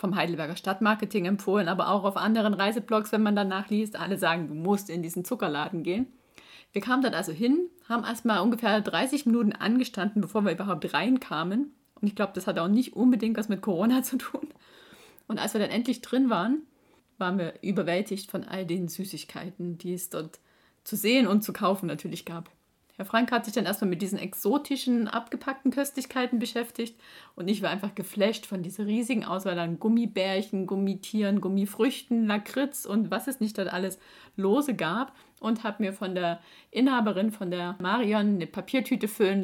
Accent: German